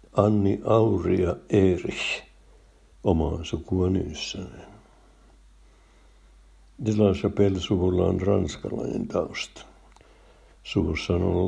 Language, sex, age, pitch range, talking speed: Finnish, male, 60-79, 85-100 Hz, 50 wpm